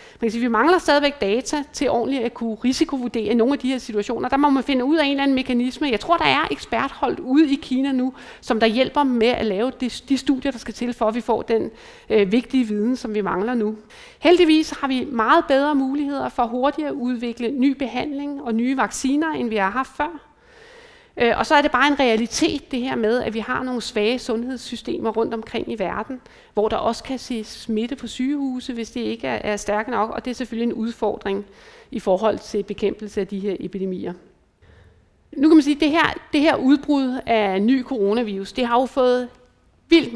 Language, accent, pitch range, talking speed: Danish, native, 220-275 Hz, 210 wpm